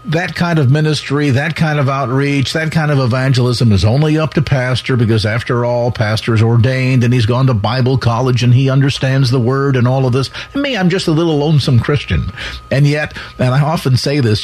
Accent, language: American, English